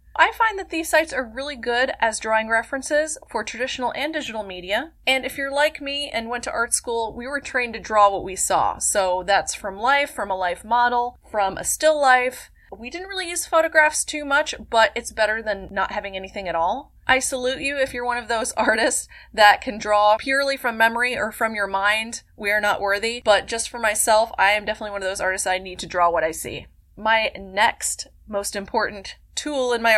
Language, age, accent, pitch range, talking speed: English, 20-39, American, 205-275 Hz, 220 wpm